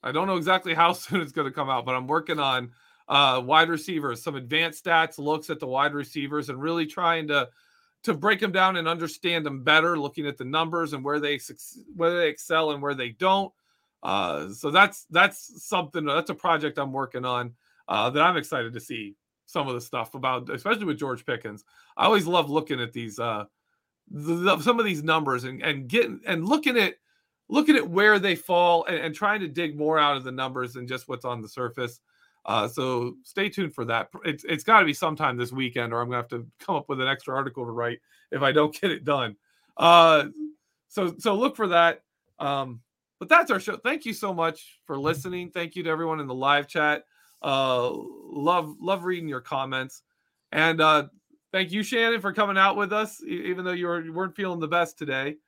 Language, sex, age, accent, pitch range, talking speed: English, male, 40-59, American, 135-185 Hz, 215 wpm